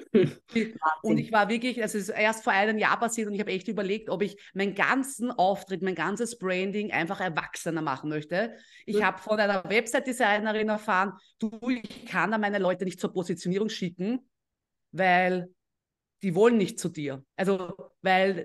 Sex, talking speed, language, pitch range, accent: female, 170 wpm, German, 185-220 Hz, German